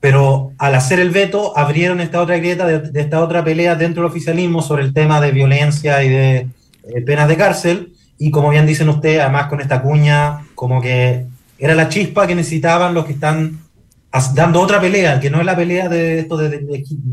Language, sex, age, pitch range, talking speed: Spanish, male, 30-49, 130-160 Hz, 215 wpm